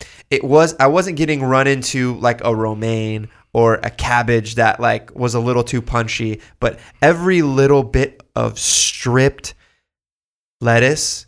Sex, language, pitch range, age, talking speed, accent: male, English, 115-140 Hz, 20-39, 145 wpm, American